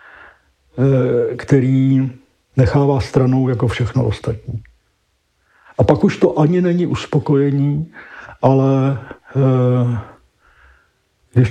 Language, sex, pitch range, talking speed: Czech, male, 125-140 Hz, 85 wpm